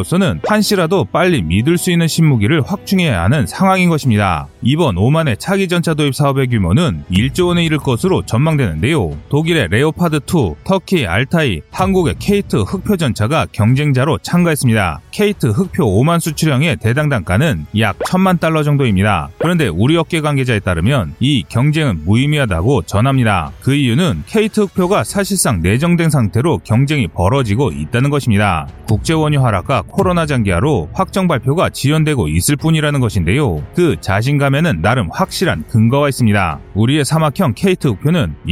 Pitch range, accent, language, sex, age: 110-165 Hz, native, Korean, male, 30-49